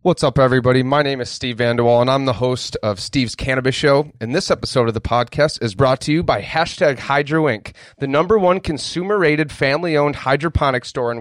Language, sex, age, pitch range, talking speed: English, male, 30-49, 120-160 Hz, 205 wpm